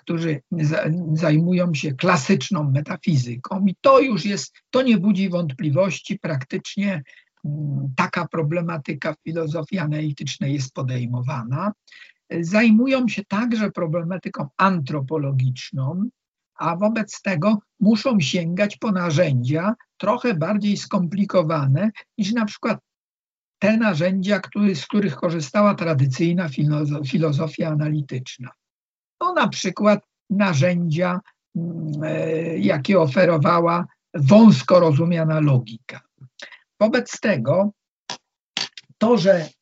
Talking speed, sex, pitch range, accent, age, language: 90 wpm, male, 150-200 Hz, native, 50-69, Polish